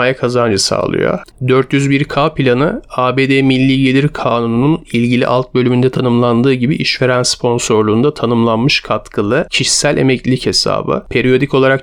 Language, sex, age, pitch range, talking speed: Turkish, male, 40-59, 120-135 Hz, 110 wpm